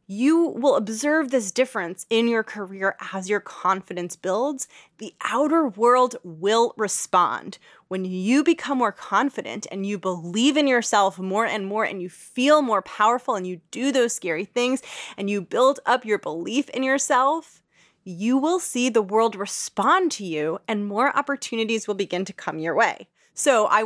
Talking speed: 170 wpm